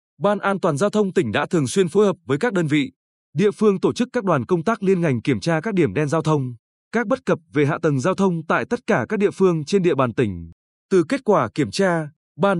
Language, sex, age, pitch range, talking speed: Vietnamese, male, 20-39, 145-200 Hz, 265 wpm